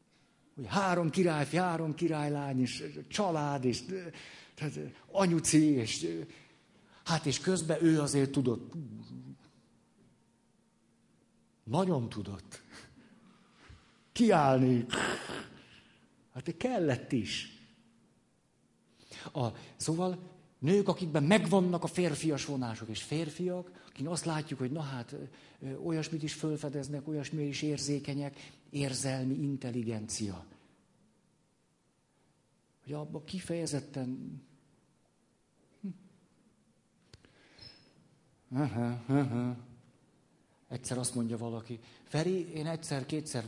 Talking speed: 80 wpm